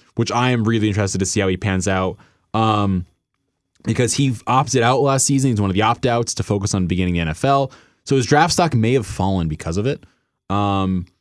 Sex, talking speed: male, 220 wpm